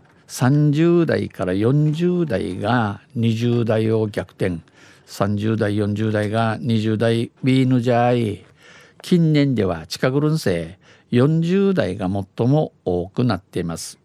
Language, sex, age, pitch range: Japanese, male, 50-69, 105-140 Hz